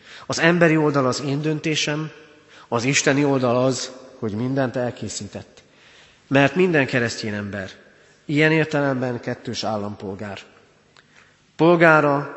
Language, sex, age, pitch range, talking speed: Hungarian, male, 40-59, 115-145 Hz, 105 wpm